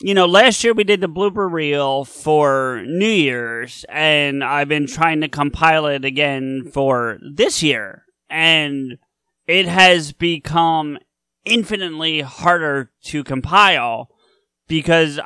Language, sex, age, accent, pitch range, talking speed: English, male, 30-49, American, 135-180 Hz, 125 wpm